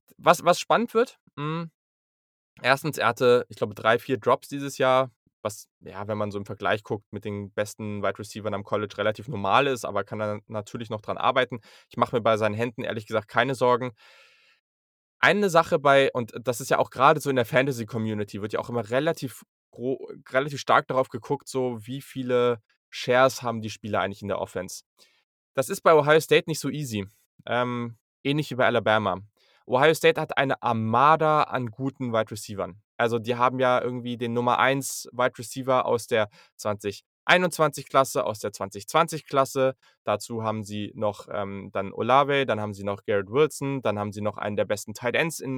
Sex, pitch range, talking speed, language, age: male, 110-140 Hz, 190 wpm, German, 10-29